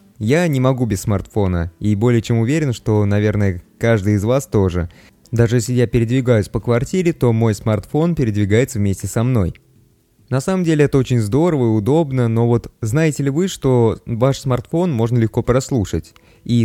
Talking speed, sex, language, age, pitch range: 175 wpm, male, Russian, 20-39, 105-130 Hz